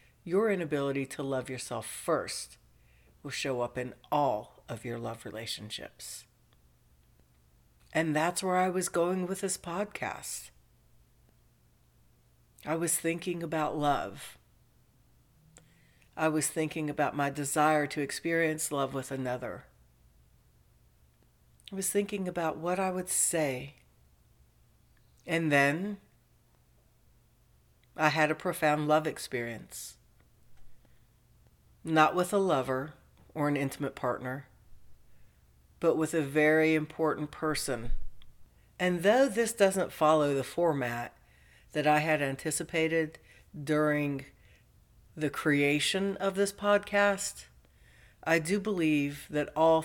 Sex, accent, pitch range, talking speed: female, American, 125-165 Hz, 110 wpm